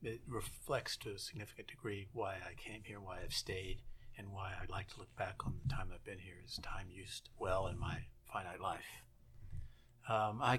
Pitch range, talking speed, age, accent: 100-120 Hz, 205 wpm, 50-69, American